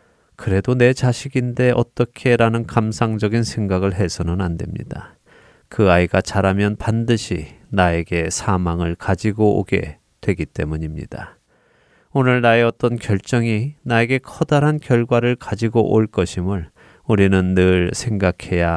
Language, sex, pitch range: Korean, male, 95-120 Hz